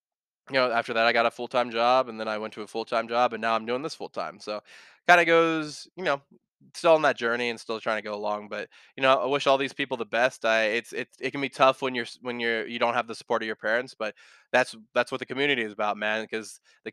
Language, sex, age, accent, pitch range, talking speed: English, male, 20-39, American, 110-130 Hz, 290 wpm